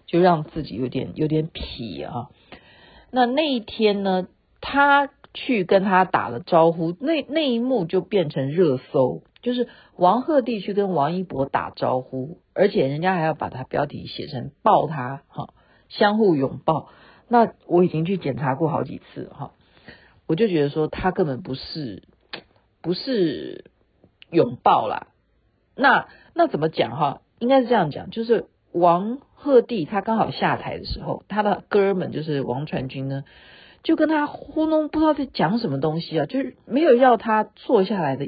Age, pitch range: 50-69, 160-245 Hz